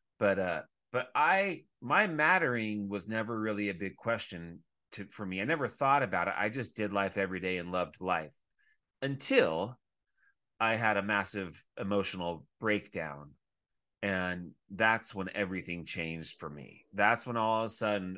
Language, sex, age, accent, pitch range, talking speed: English, male, 30-49, American, 90-115 Hz, 160 wpm